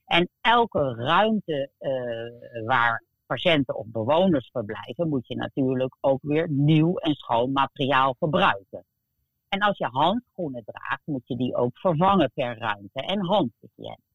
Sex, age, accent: female, 50-69, Dutch